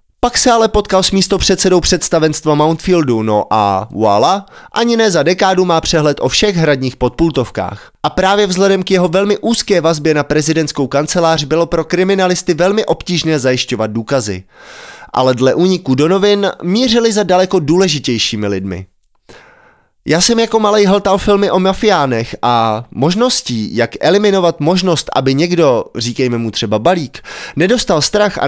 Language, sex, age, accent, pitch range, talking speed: Czech, male, 20-39, native, 135-190 Hz, 150 wpm